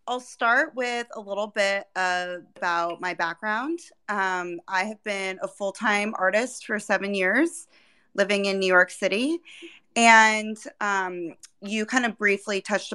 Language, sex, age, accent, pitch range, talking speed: English, female, 20-39, American, 180-220 Hz, 150 wpm